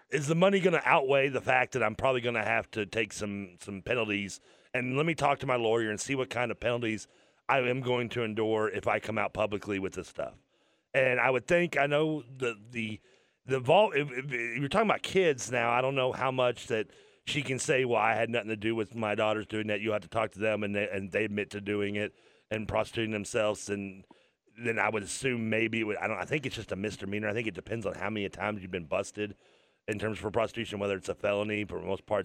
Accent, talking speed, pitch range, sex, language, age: American, 260 wpm, 100-125 Hz, male, English, 40-59